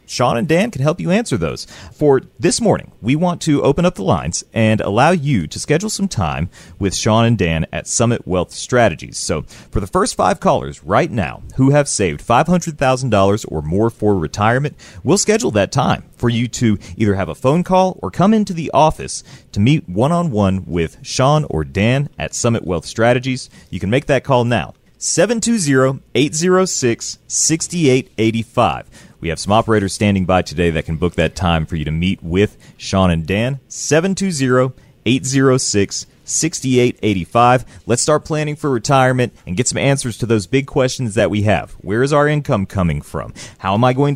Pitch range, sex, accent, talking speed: 100-150 Hz, male, American, 180 wpm